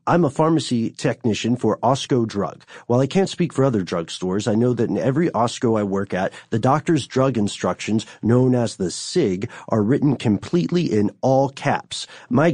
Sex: male